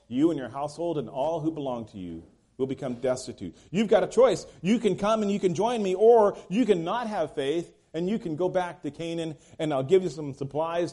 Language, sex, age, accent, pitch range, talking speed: English, male, 40-59, American, 110-170 Hz, 240 wpm